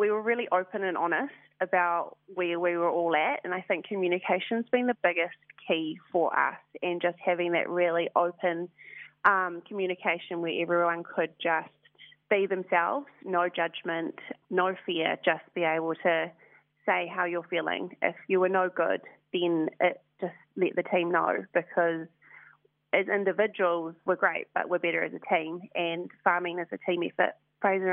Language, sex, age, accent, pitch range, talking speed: English, female, 20-39, Australian, 170-185 Hz, 165 wpm